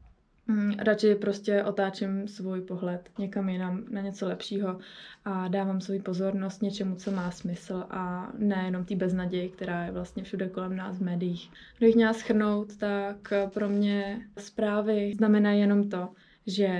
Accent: native